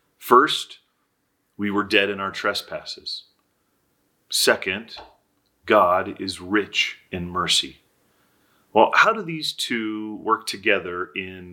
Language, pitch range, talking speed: English, 95-155 Hz, 110 wpm